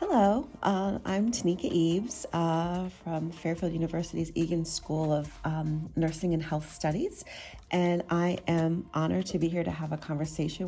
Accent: American